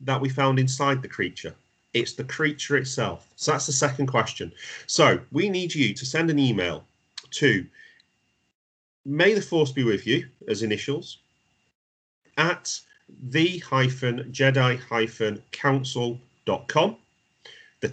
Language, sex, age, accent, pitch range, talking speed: English, male, 30-49, British, 115-145 Hz, 125 wpm